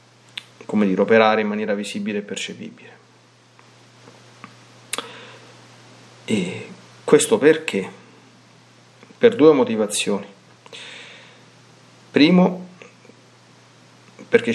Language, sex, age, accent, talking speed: Italian, male, 40-59, native, 65 wpm